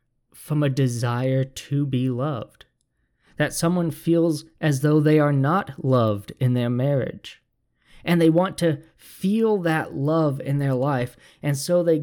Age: 20-39